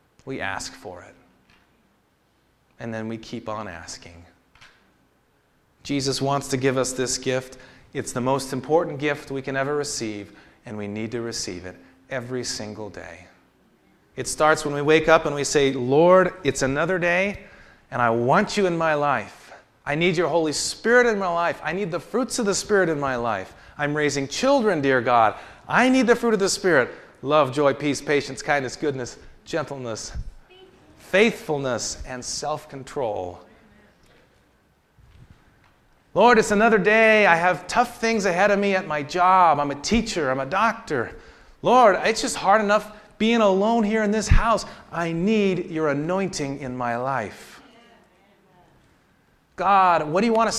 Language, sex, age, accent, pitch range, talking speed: English, male, 30-49, American, 135-210 Hz, 165 wpm